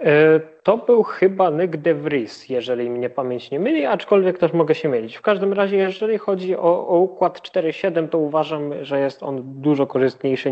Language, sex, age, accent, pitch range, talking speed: Polish, male, 20-39, native, 120-150 Hz, 185 wpm